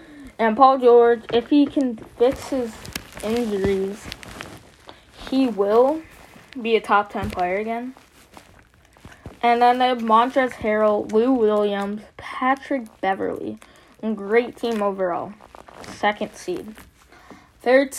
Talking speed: 105 wpm